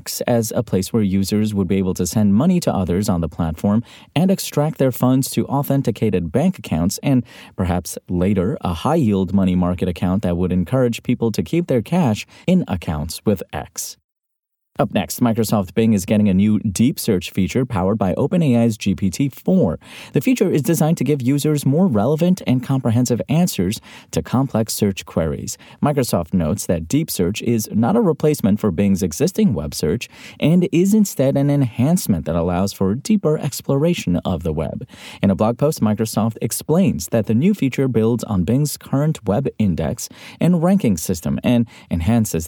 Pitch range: 95-145 Hz